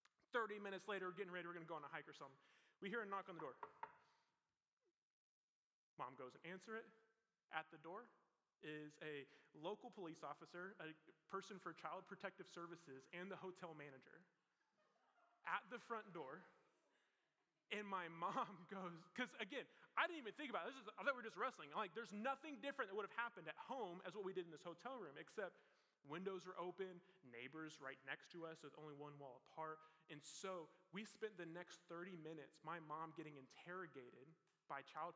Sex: male